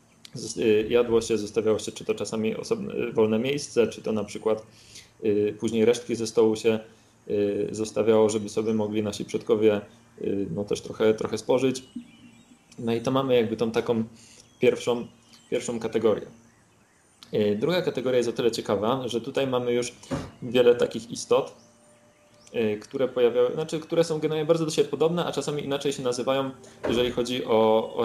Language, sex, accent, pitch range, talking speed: Polish, male, native, 110-125 Hz, 155 wpm